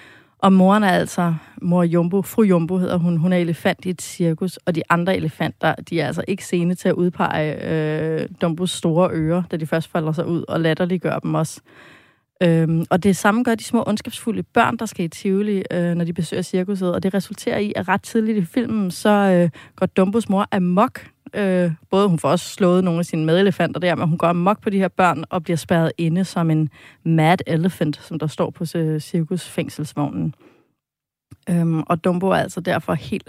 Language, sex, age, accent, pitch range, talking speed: Danish, female, 30-49, native, 165-195 Hz, 205 wpm